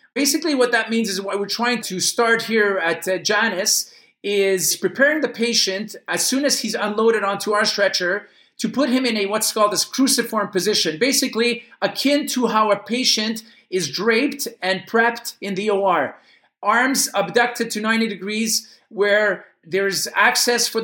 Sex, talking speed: male, 165 wpm